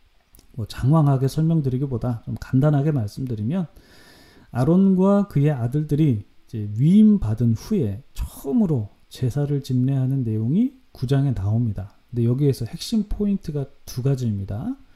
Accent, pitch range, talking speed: Korean, 120-175 Hz, 95 wpm